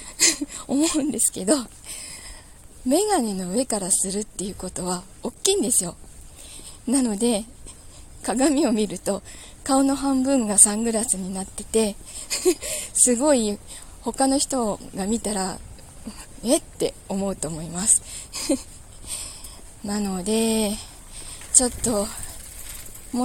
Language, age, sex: Japanese, 20-39, female